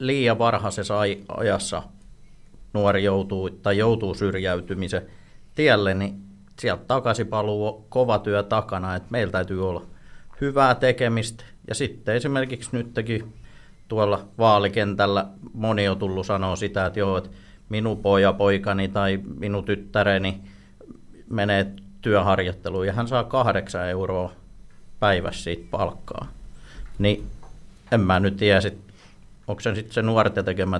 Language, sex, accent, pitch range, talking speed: Finnish, male, native, 95-110 Hz, 125 wpm